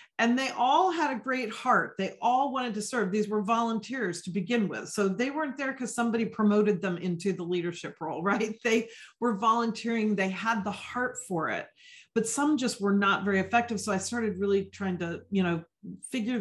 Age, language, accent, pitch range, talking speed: 40-59, English, American, 190-240 Hz, 205 wpm